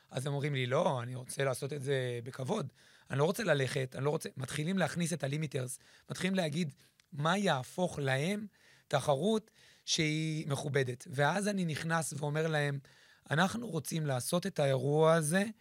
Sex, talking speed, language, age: male, 160 wpm, Hebrew, 30-49